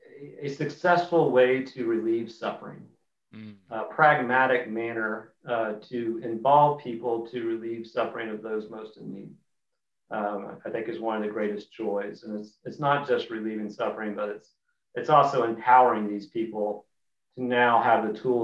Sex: male